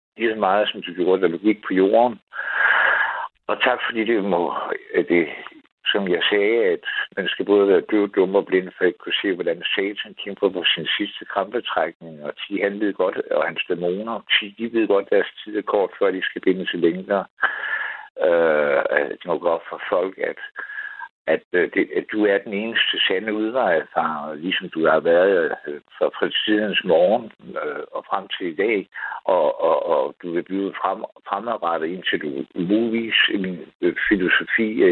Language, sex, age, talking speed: Danish, male, 60-79, 180 wpm